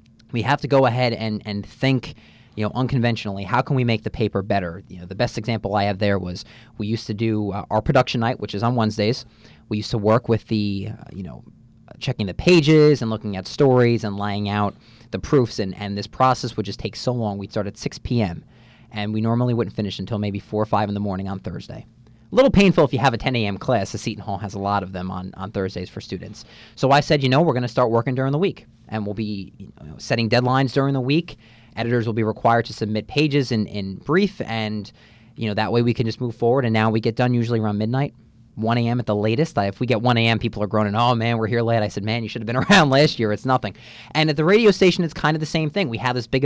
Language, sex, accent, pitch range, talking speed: Polish, male, American, 105-125 Hz, 270 wpm